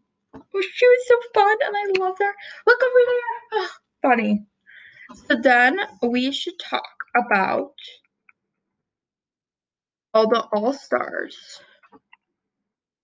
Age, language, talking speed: 10-29, English, 95 wpm